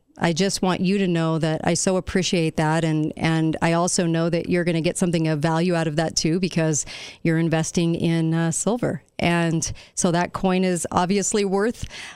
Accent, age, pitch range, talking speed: American, 40-59, 160-190 Hz, 200 wpm